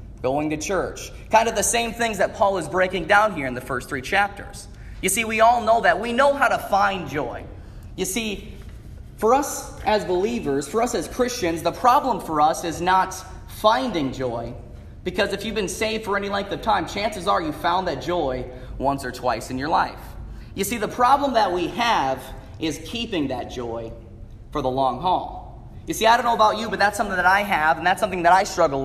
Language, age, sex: English, 30-49, male